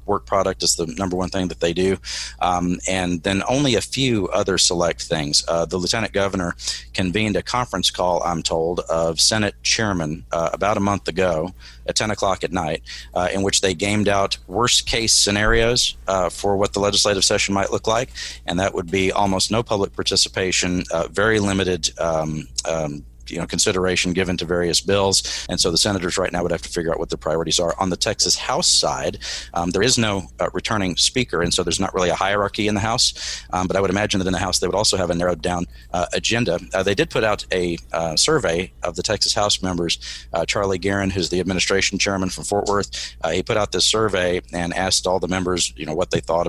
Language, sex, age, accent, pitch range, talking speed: English, male, 40-59, American, 90-100 Hz, 225 wpm